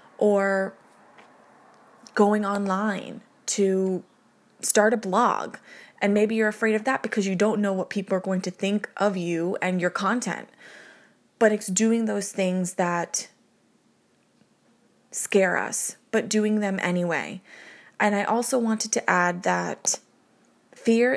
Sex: female